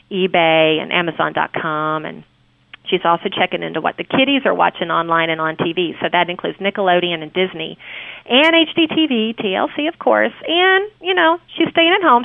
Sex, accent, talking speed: female, American, 175 wpm